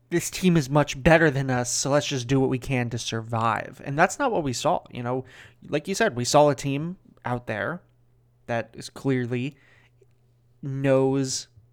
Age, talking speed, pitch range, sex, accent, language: 20-39, 190 wpm, 120-140 Hz, male, American, English